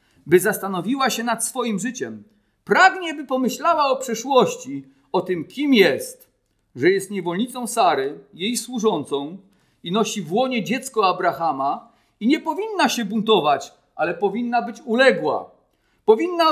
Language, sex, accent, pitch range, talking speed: Polish, male, native, 180-290 Hz, 135 wpm